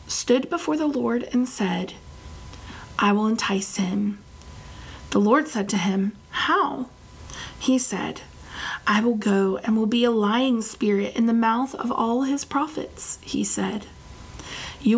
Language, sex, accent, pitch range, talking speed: English, female, American, 200-240 Hz, 150 wpm